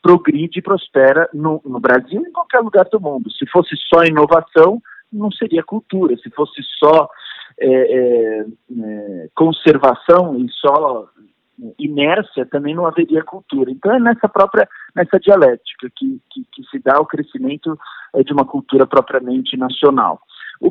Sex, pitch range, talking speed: male, 125-195 Hz, 140 wpm